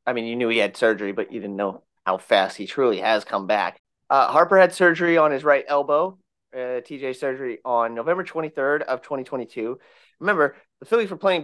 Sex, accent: male, American